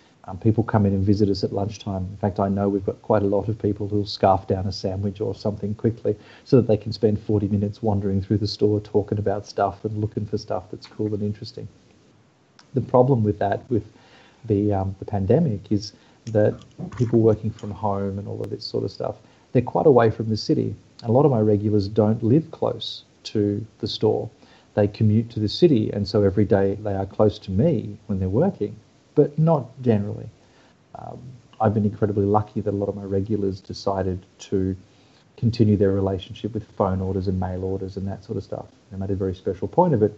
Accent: Australian